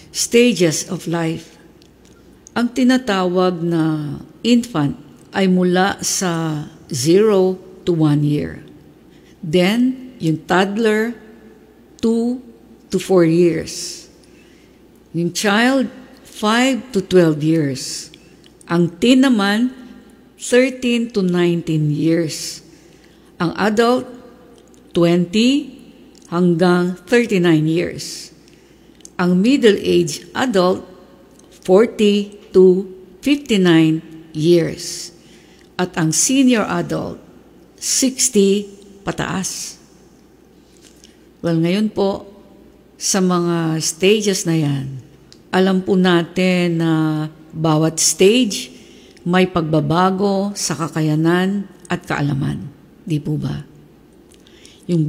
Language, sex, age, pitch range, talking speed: English, female, 50-69, 165-210 Hz, 85 wpm